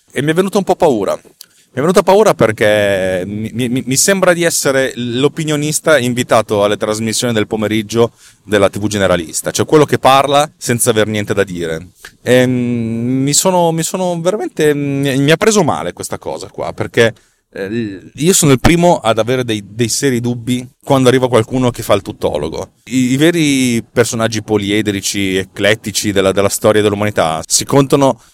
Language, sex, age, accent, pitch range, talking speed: Italian, male, 30-49, native, 100-130 Hz, 165 wpm